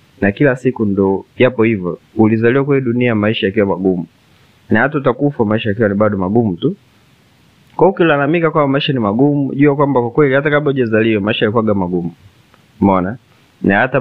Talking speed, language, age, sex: 185 wpm, Swahili, 20-39, male